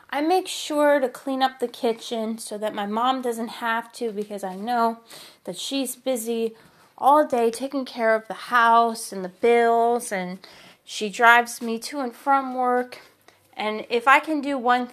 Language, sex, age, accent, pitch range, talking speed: English, female, 30-49, American, 215-260 Hz, 180 wpm